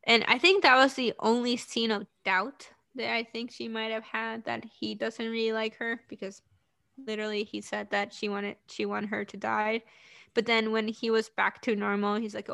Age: 20-39